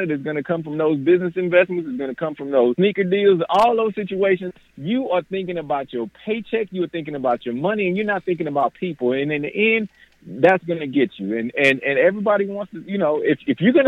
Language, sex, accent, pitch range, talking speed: English, male, American, 145-195 Hz, 250 wpm